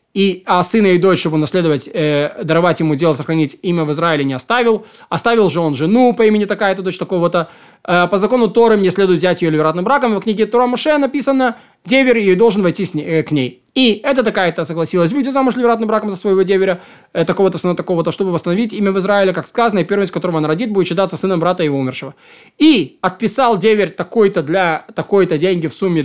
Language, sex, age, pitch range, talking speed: Russian, male, 20-39, 160-215 Hz, 210 wpm